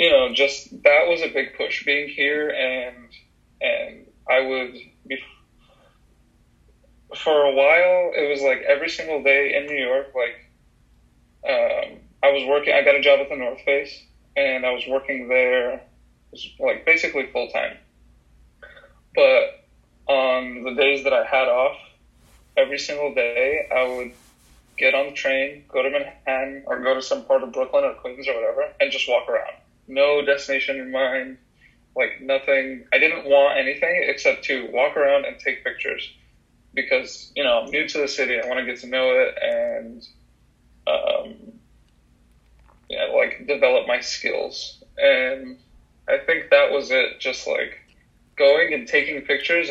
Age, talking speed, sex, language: 20-39, 165 wpm, male, English